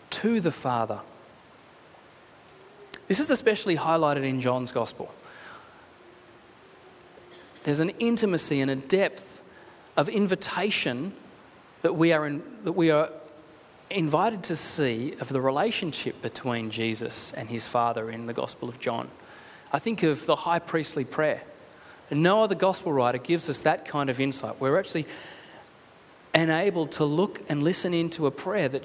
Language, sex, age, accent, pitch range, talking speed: English, male, 30-49, Australian, 135-185 Hz, 145 wpm